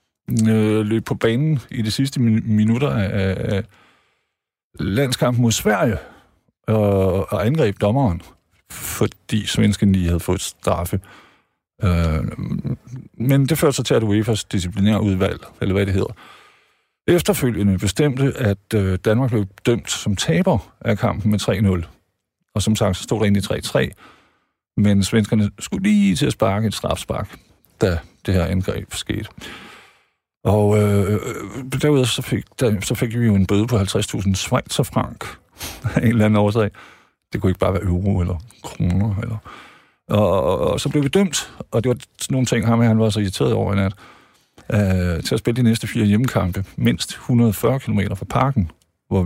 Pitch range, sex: 100-120 Hz, male